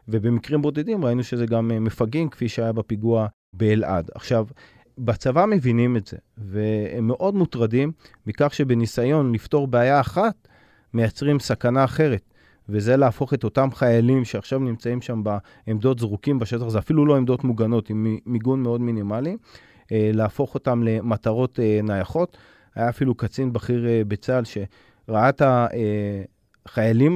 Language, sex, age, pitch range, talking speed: Hebrew, male, 30-49, 110-130 Hz, 130 wpm